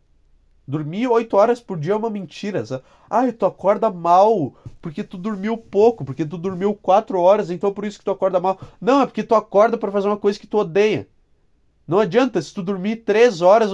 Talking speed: 210 wpm